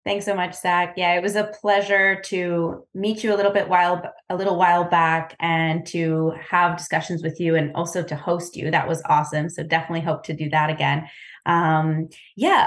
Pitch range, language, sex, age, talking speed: 170-200 Hz, English, female, 20-39, 205 wpm